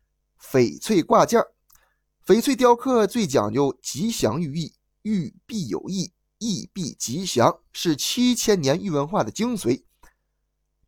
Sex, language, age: male, Chinese, 20-39